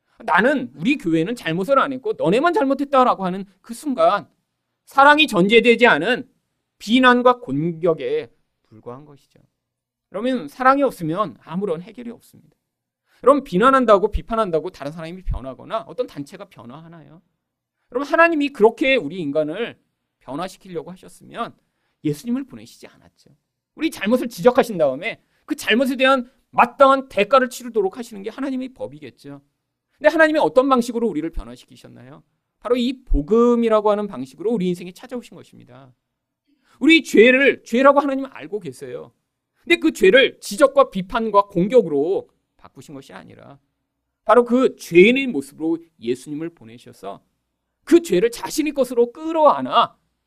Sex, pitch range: male, 165-275 Hz